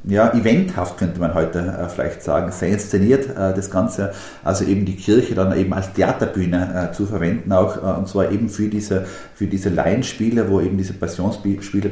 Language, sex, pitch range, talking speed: German, male, 90-105 Hz, 190 wpm